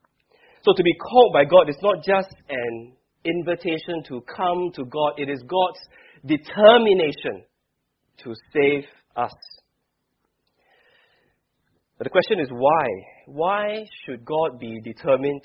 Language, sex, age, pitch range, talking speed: English, male, 20-39, 130-185 Hz, 125 wpm